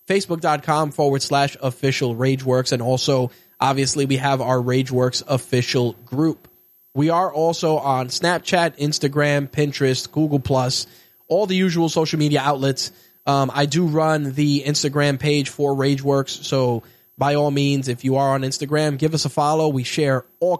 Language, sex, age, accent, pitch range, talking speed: English, male, 20-39, American, 135-155 Hz, 155 wpm